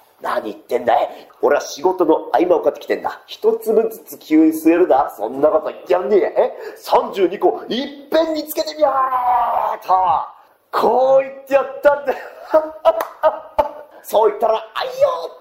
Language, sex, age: Japanese, male, 40-59